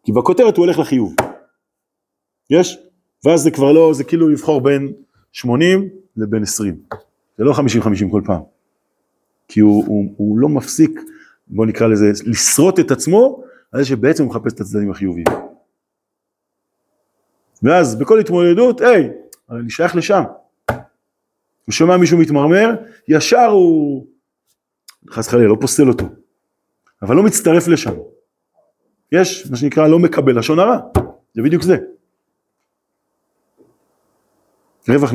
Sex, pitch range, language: male, 105-170 Hz, Hebrew